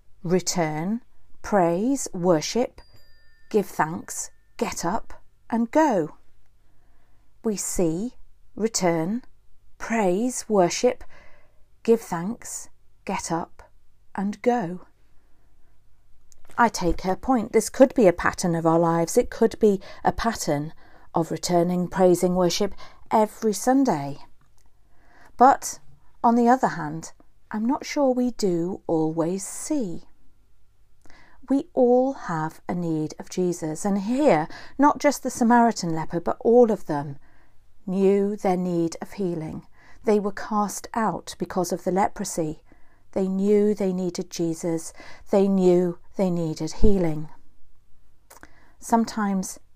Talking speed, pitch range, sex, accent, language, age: 115 wpm, 160-220 Hz, female, British, English, 40-59